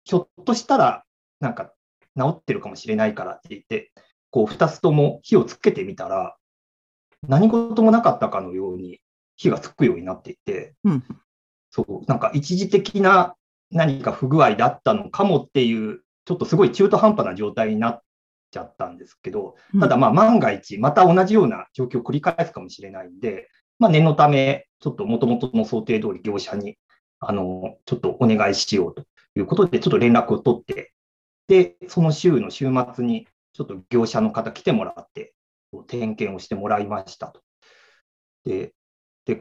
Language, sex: Japanese, male